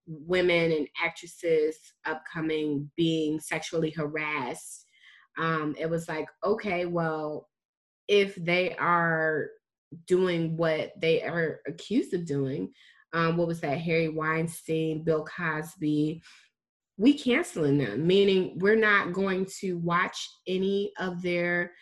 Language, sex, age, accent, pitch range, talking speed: English, female, 20-39, American, 155-185 Hz, 120 wpm